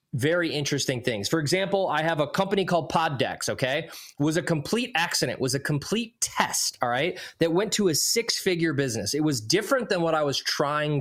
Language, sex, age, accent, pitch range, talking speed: English, male, 20-39, American, 135-185 Hz, 200 wpm